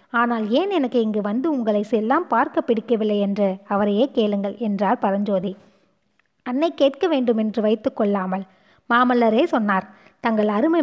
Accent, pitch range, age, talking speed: native, 210-265 Hz, 20-39, 125 wpm